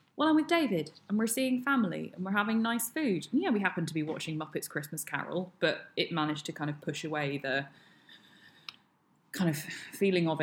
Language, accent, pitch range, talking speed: English, British, 150-190 Hz, 200 wpm